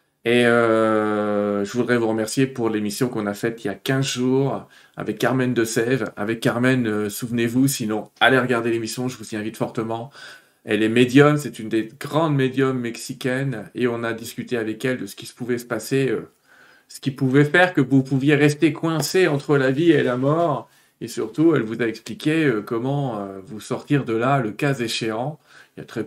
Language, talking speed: French, 210 wpm